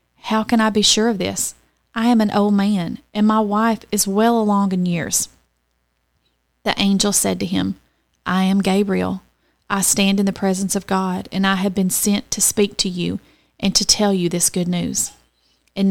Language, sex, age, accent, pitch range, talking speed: English, female, 30-49, American, 180-215 Hz, 195 wpm